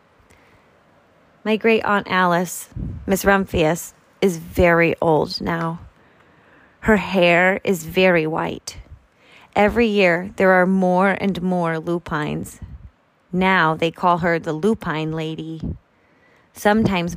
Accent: American